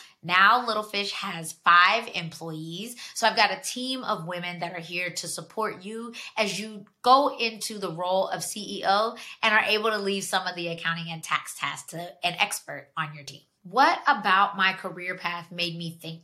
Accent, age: American, 20-39